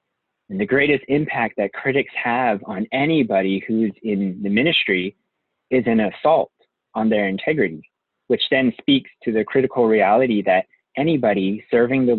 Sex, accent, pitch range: male, American, 100-140 Hz